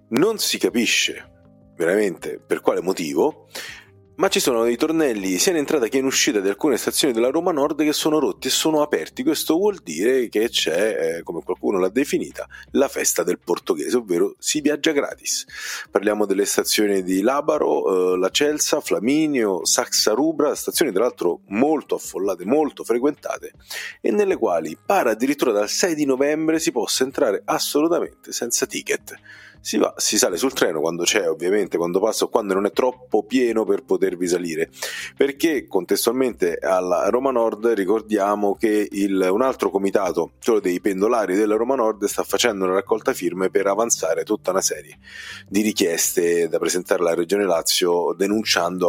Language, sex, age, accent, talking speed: Italian, male, 40-59, native, 165 wpm